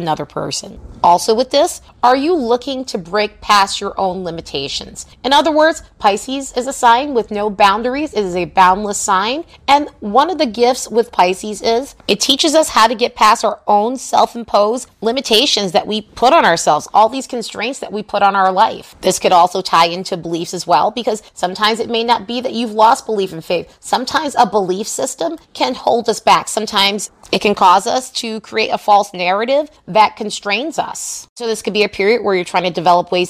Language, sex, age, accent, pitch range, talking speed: English, female, 30-49, American, 200-255 Hz, 205 wpm